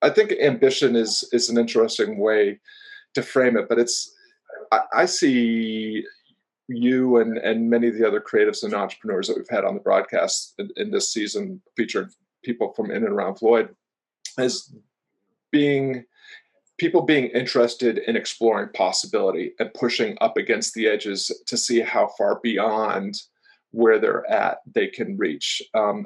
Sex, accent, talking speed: male, American, 160 wpm